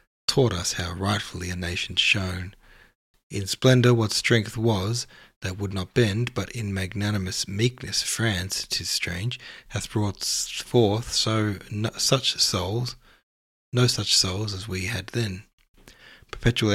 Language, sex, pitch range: English, male, 95-115 Hz